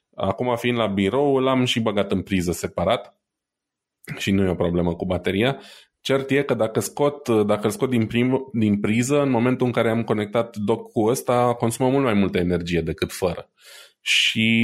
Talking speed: 190 wpm